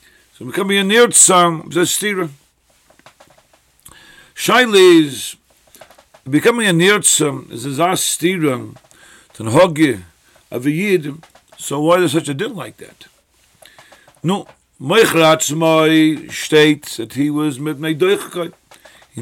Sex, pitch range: male, 150-185 Hz